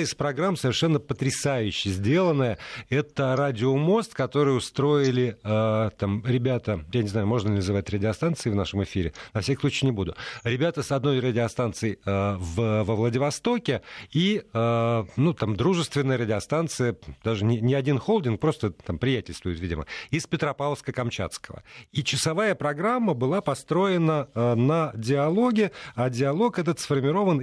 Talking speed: 140 wpm